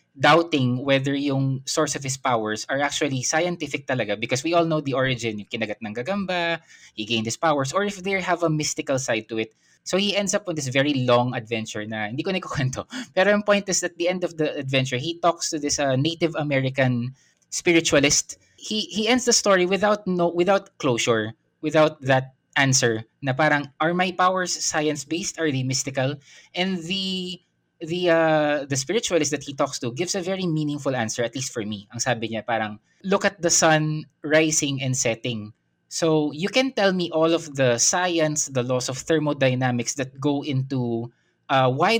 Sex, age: male, 20-39